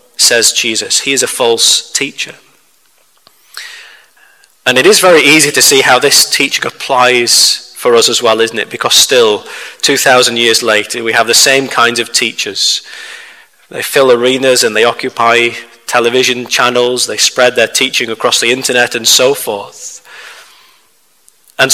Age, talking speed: 30-49, 150 wpm